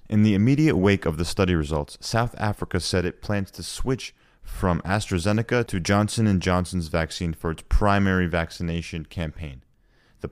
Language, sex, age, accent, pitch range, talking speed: English, male, 30-49, American, 80-100 Hz, 155 wpm